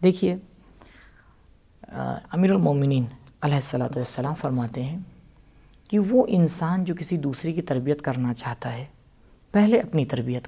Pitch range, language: 130-180 Hz, Urdu